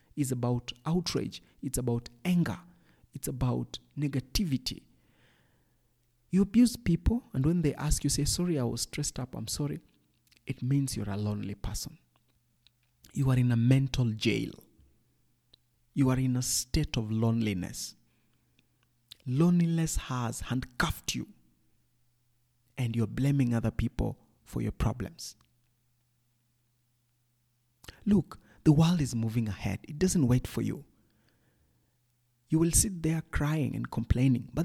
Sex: male